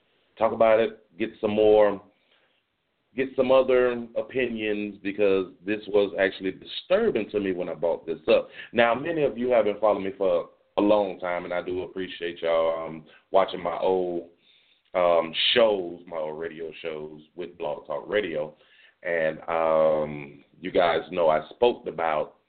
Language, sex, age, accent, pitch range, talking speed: English, male, 30-49, American, 85-130 Hz, 160 wpm